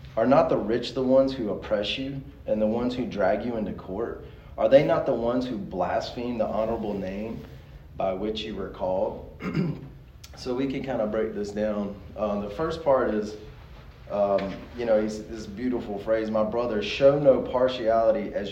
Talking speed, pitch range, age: 190 wpm, 100-125 Hz, 30-49